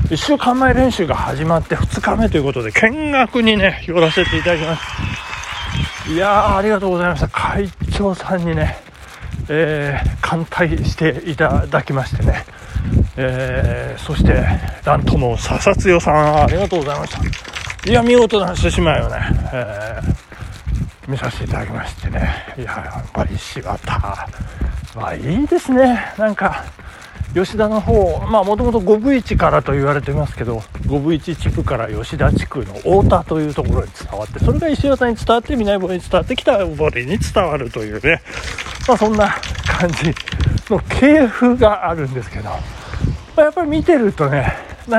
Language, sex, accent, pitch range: Japanese, male, native, 130-215 Hz